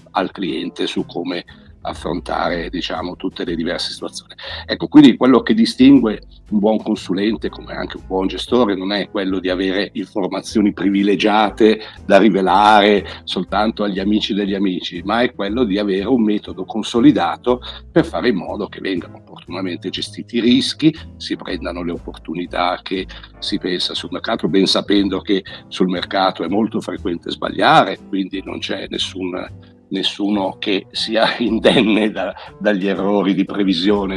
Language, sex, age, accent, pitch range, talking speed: Italian, male, 60-79, native, 95-110 Hz, 150 wpm